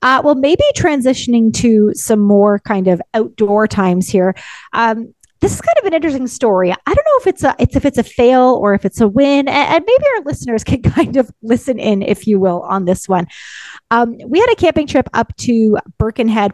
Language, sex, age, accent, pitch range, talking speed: English, female, 30-49, American, 205-280 Hz, 205 wpm